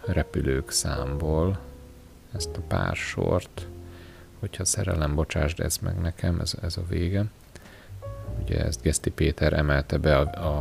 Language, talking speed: Hungarian, 130 wpm